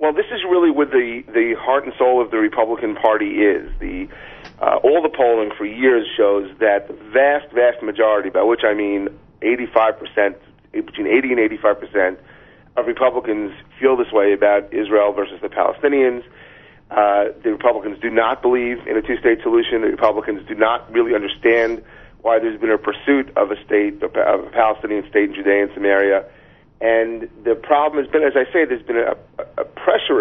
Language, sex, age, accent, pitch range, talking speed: English, male, 40-59, American, 110-155 Hz, 185 wpm